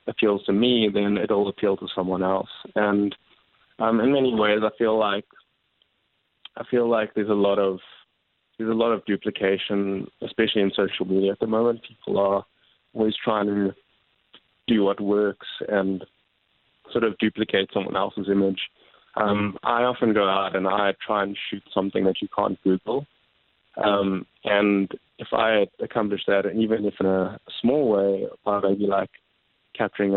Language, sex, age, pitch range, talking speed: English, male, 20-39, 95-110 Hz, 165 wpm